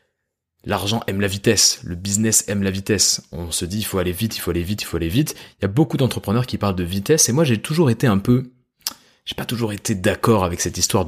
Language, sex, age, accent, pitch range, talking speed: French, male, 20-39, French, 95-120 Hz, 260 wpm